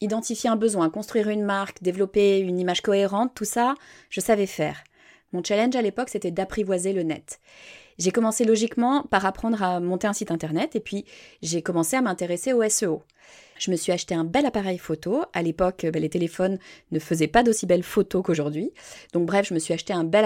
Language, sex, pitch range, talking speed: French, female, 175-230 Hz, 200 wpm